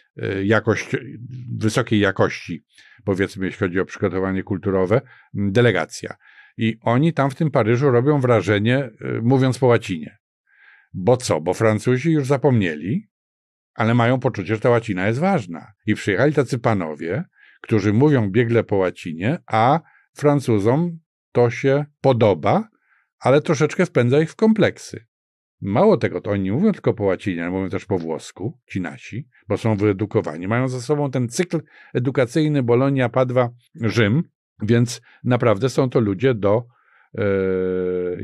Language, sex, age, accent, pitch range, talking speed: Polish, male, 50-69, native, 100-130 Hz, 135 wpm